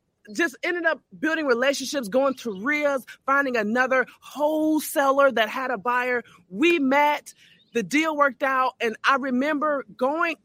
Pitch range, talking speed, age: 240-325 Hz, 145 wpm, 20-39